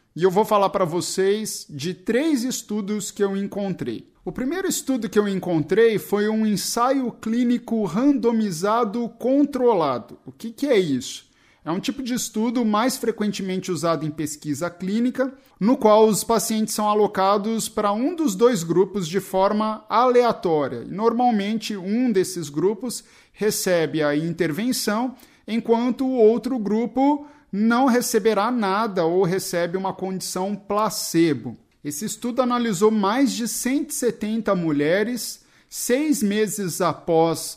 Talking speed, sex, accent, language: 135 wpm, male, Brazilian, Portuguese